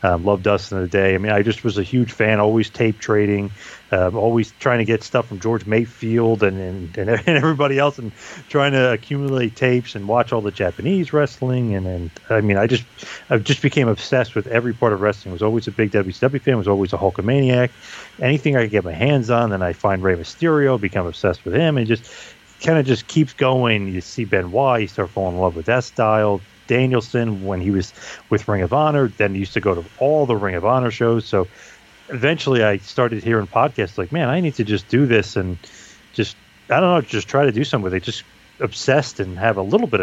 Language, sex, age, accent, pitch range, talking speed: English, male, 30-49, American, 100-130 Hz, 230 wpm